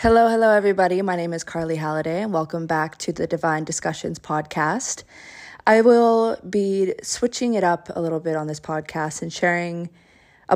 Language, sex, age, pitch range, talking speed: English, female, 20-39, 160-180 Hz, 175 wpm